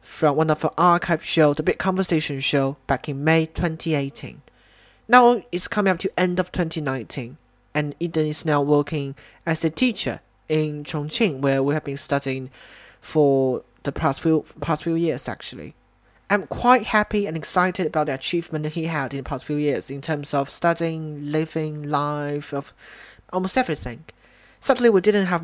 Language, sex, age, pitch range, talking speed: English, male, 20-39, 135-180 Hz, 175 wpm